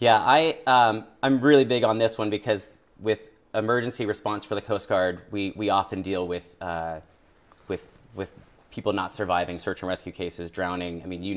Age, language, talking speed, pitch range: 30-49, English, 190 wpm, 100-125 Hz